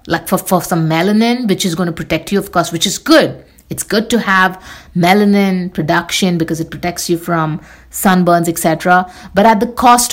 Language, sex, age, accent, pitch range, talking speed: English, female, 50-69, Indian, 165-220 Hz, 195 wpm